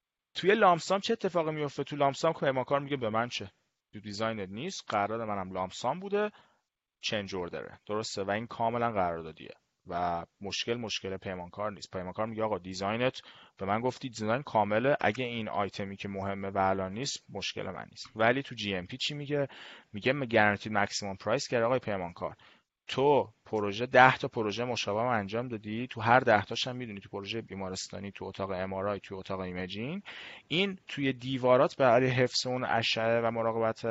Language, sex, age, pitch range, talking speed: Persian, male, 30-49, 105-140 Hz, 175 wpm